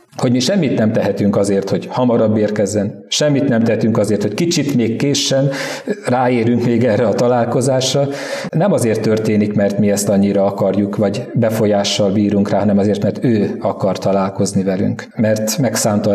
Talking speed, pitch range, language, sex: 160 wpm, 105-125 Hz, Hungarian, male